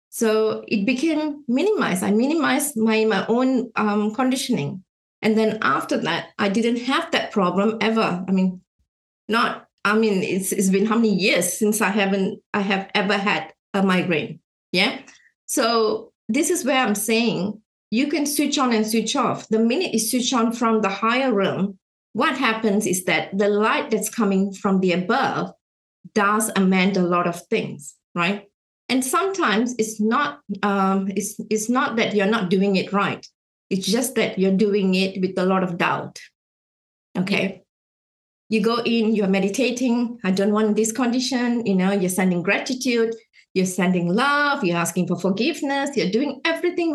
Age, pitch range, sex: 20-39, 195-240 Hz, female